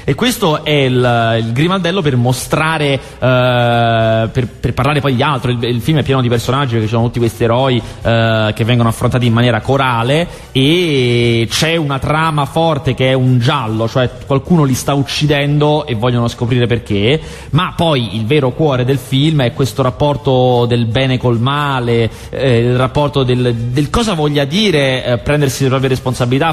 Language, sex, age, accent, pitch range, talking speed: Italian, male, 30-49, native, 115-150 Hz, 180 wpm